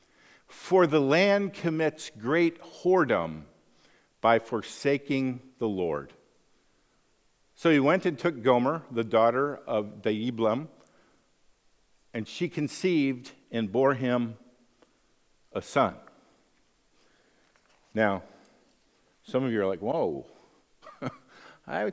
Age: 50-69